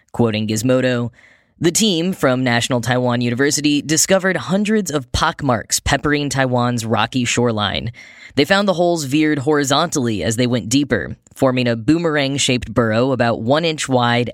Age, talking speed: 10-29, 140 wpm